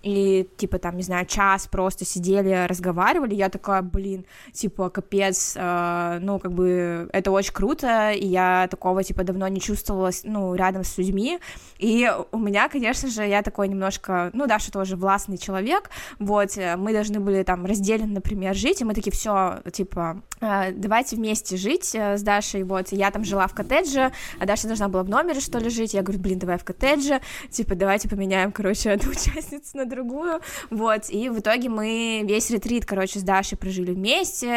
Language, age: Russian, 20-39